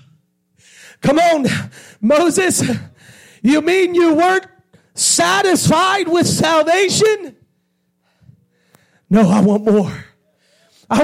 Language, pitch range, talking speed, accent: English, 245-345 Hz, 80 wpm, American